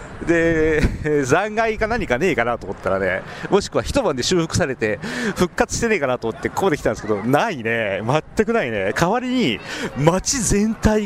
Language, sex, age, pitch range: Japanese, male, 40-59, 115-180 Hz